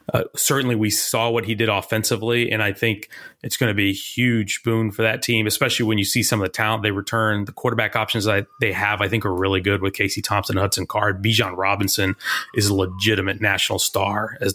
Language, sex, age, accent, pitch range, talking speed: English, male, 30-49, American, 105-120 Hz, 230 wpm